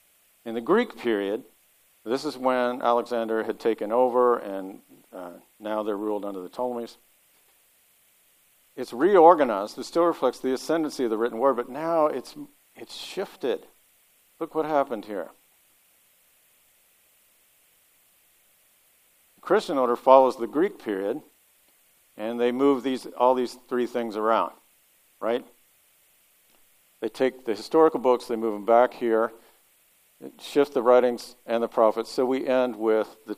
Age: 50-69